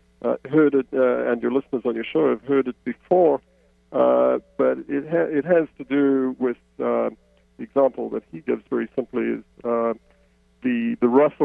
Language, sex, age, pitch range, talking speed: English, male, 50-69, 100-145 Hz, 190 wpm